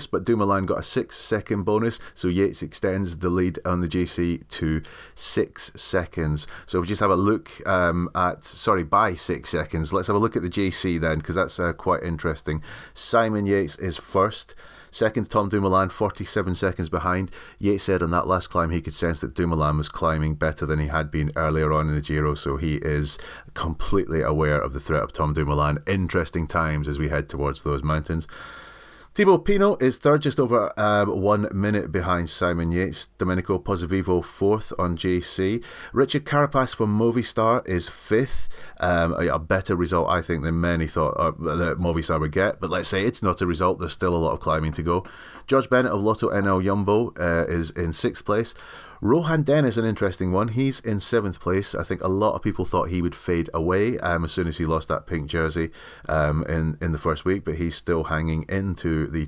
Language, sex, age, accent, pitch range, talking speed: English, male, 30-49, British, 80-100 Hz, 200 wpm